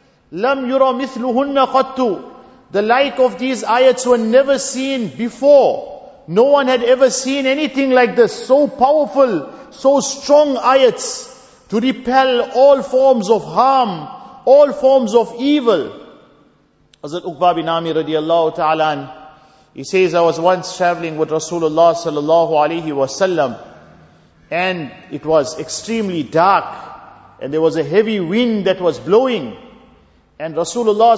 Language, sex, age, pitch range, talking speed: English, male, 50-69, 195-255 Hz, 125 wpm